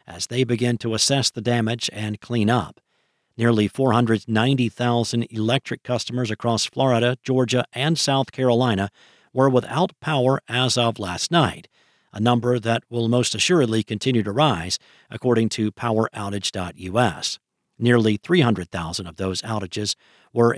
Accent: American